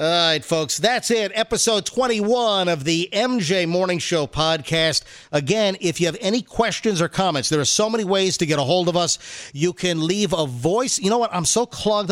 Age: 50-69